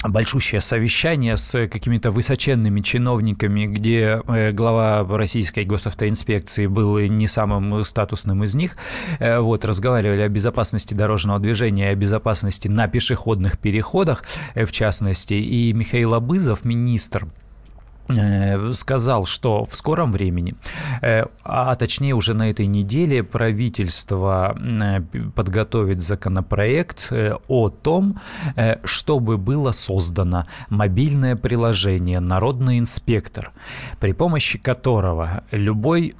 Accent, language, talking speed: native, Russian, 100 wpm